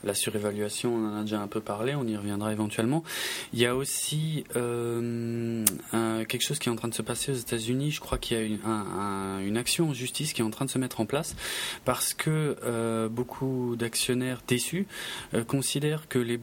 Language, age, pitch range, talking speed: French, 20-39, 110-140 Hz, 215 wpm